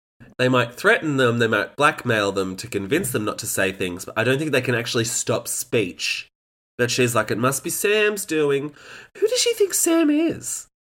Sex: male